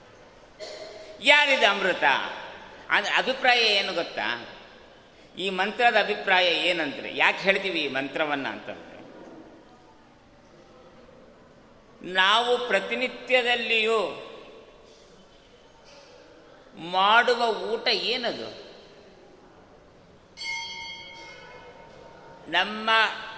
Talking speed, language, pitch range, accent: 55 wpm, Kannada, 175-225 Hz, native